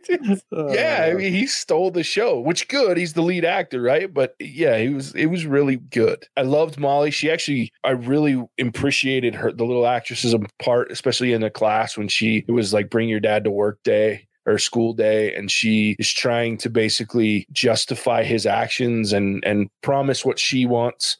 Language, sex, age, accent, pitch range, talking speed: English, male, 20-39, American, 110-130 Hz, 190 wpm